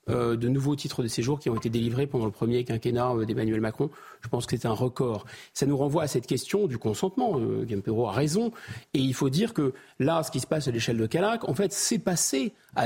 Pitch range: 130-185 Hz